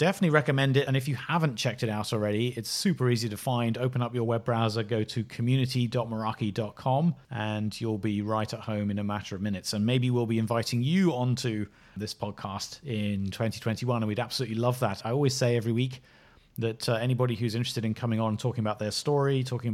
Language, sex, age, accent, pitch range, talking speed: English, male, 30-49, British, 110-135 Hz, 210 wpm